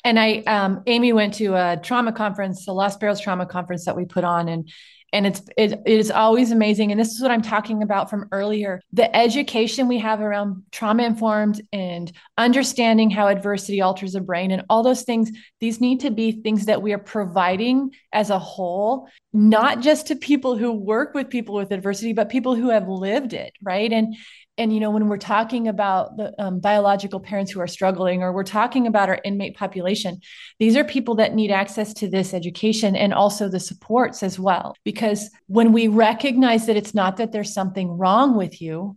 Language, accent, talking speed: English, American, 205 wpm